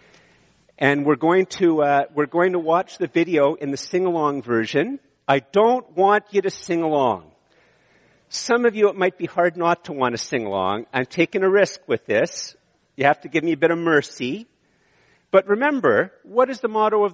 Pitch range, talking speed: 135-200 Hz, 200 wpm